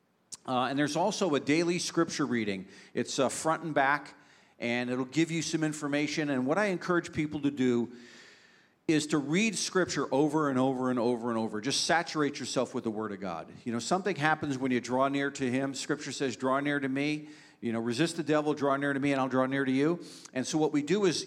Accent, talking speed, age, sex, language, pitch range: American, 230 wpm, 50-69, male, English, 125-155 Hz